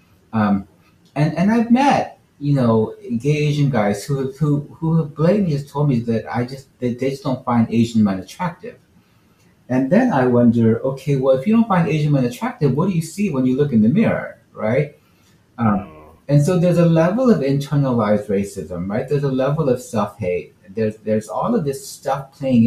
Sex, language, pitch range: male, English, 110-145 Hz